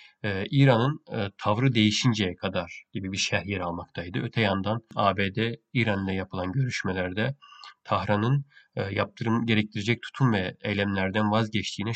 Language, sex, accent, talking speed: Turkish, male, native, 105 wpm